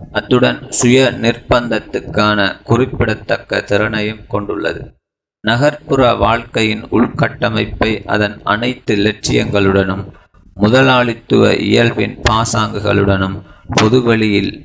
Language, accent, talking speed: Tamil, native, 65 wpm